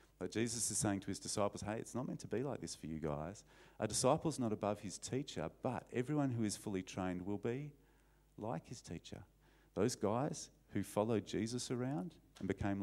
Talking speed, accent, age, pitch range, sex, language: 195 wpm, Australian, 40-59, 90-110 Hz, male, English